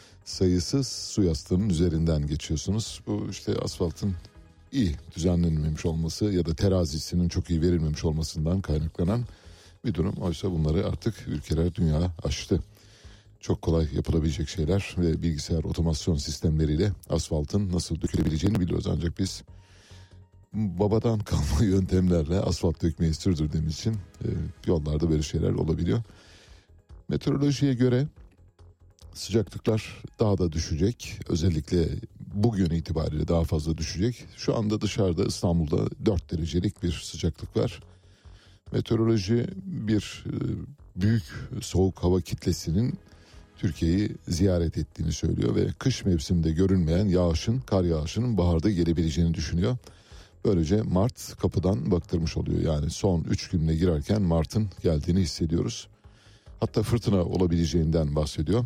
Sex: male